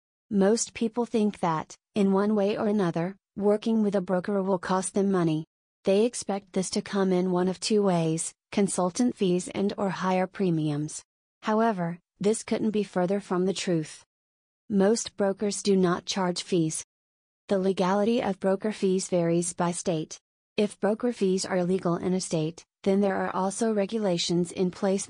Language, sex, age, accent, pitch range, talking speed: English, female, 30-49, American, 175-205 Hz, 165 wpm